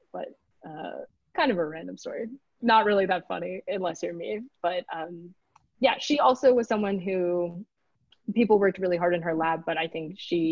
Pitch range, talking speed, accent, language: 165-205 Hz, 190 wpm, American, English